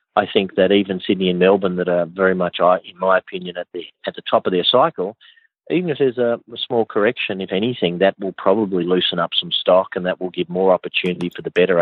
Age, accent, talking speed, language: 40-59, Australian, 245 wpm, English